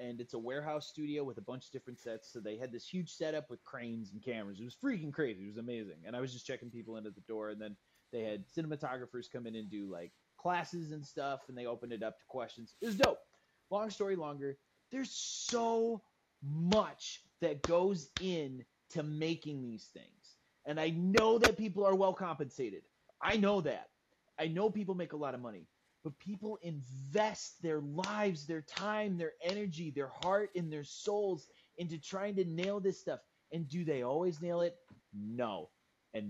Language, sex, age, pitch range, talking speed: English, male, 30-49, 135-200 Hz, 200 wpm